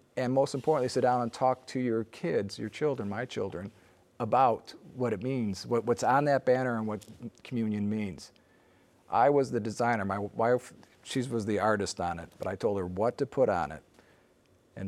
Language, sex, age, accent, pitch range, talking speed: English, male, 50-69, American, 95-120 Hz, 195 wpm